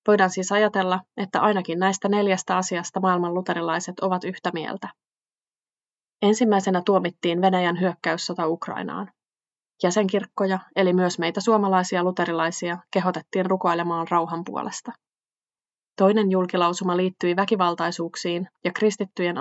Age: 20-39